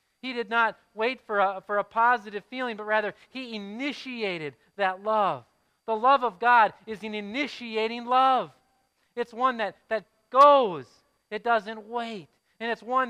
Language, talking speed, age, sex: English, 160 wpm, 40-59, male